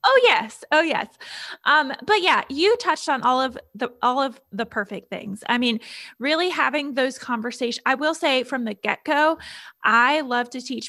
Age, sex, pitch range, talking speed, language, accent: 20-39, female, 215-260 Hz, 185 wpm, English, American